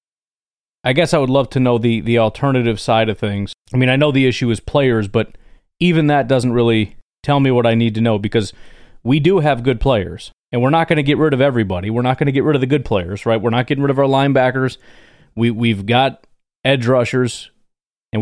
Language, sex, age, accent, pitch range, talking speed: English, male, 30-49, American, 115-140 Hz, 235 wpm